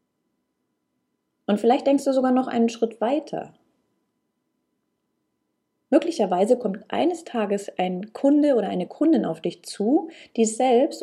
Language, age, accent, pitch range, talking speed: German, 30-49, German, 185-245 Hz, 125 wpm